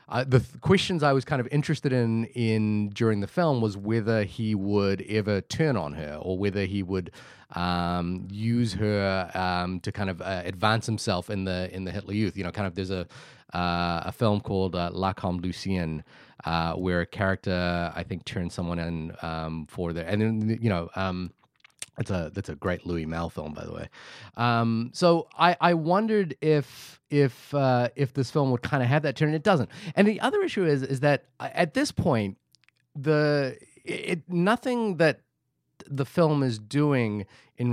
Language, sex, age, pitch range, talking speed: English, male, 30-49, 95-135 Hz, 195 wpm